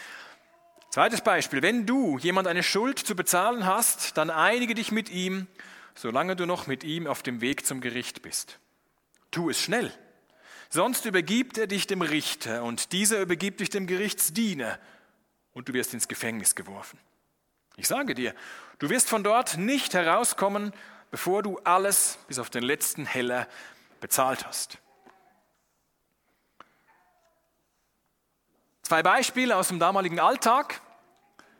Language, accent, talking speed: German, German, 135 wpm